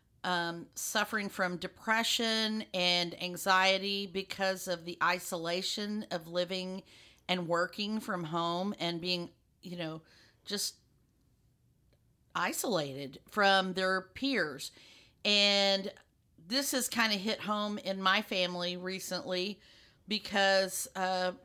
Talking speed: 105 wpm